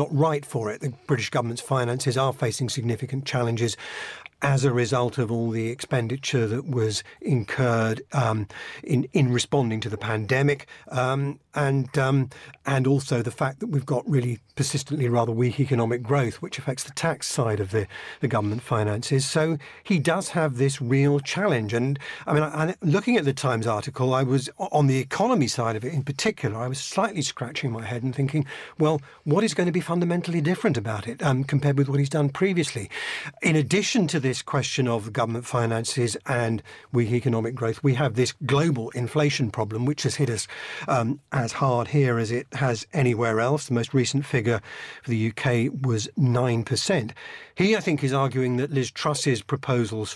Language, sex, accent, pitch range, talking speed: English, male, British, 120-145 Hz, 190 wpm